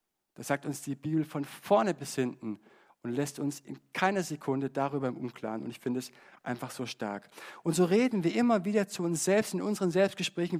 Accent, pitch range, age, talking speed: German, 135-185 Hz, 60-79, 210 wpm